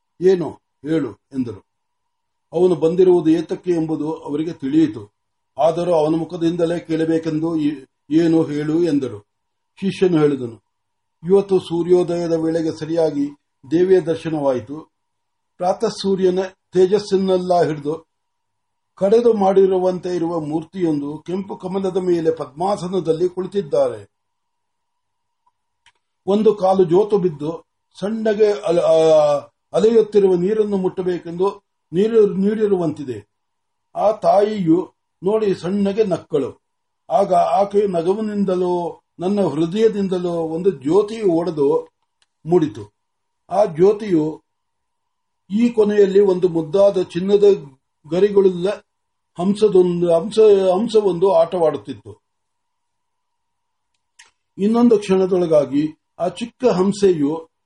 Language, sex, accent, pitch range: Marathi, male, native, 165-230 Hz